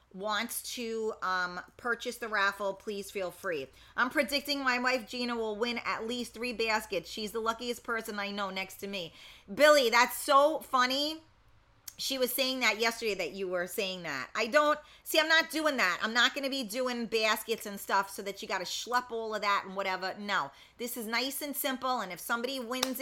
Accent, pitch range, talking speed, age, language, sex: American, 190-245 Hz, 210 wpm, 30-49, English, female